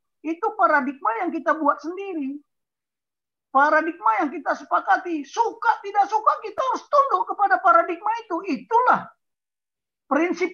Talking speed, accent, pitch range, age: 120 wpm, native, 210-305 Hz, 40-59